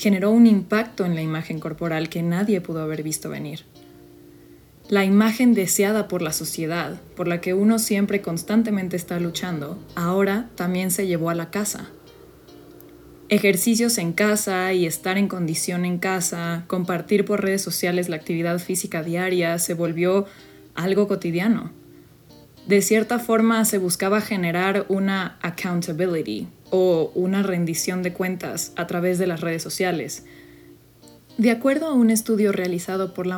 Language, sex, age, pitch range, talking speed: Spanish, female, 20-39, 170-205 Hz, 145 wpm